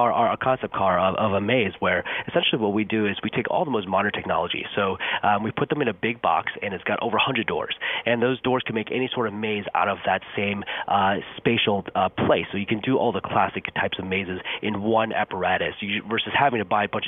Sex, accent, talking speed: male, American, 255 wpm